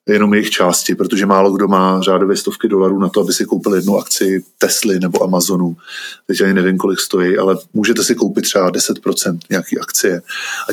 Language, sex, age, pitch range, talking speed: Czech, male, 20-39, 100-120 Hz, 190 wpm